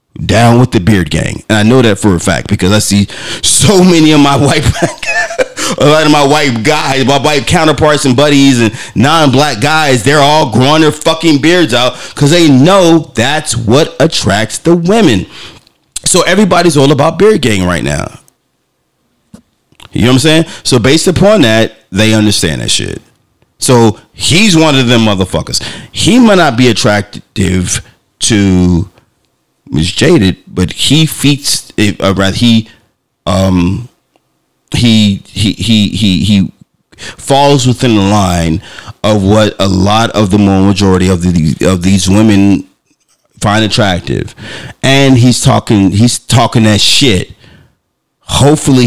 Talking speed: 140 wpm